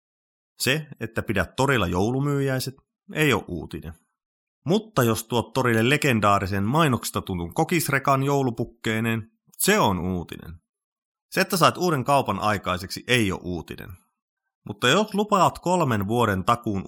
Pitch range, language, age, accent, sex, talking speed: 105-155 Hz, Finnish, 30-49, native, male, 125 wpm